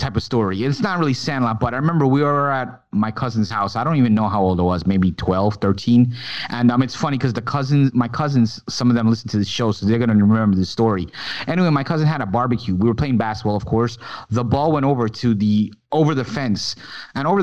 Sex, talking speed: male, 250 wpm